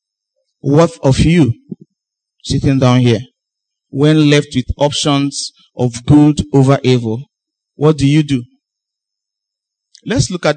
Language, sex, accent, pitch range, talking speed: English, male, Nigerian, 125-160 Hz, 120 wpm